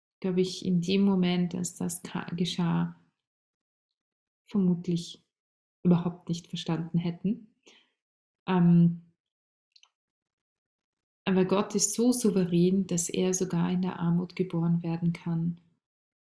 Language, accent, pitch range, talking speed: German, German, 170-195 Hz, 100 wpm